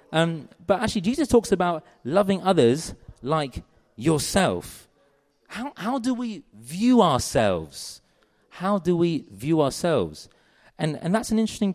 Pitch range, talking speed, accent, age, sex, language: 120-175 Hz, 135 wpm, British, 30-49, male, English